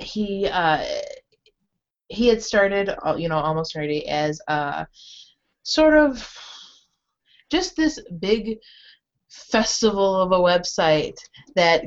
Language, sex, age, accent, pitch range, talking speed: English, female, 20-39, American, 155-195 Hz, 105 wpm